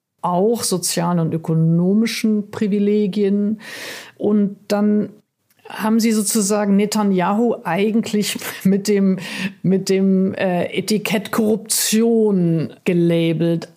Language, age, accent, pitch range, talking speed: German, 50-69, German, 165-210 Hz, 85 wpm